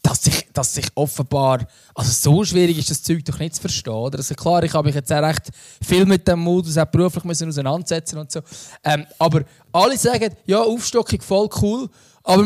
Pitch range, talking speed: 145-185 Hz, 200 wpm